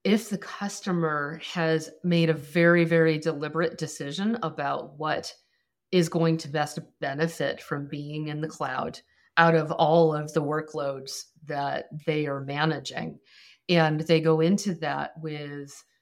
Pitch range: 150-175 Hz